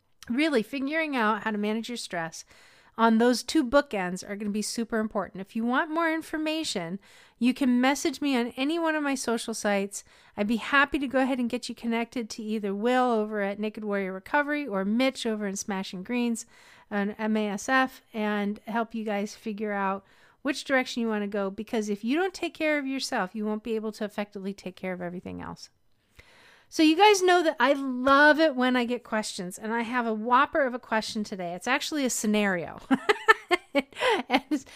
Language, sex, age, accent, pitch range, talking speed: English, female, 40-59, American, 215-285 Hz, 200 wpm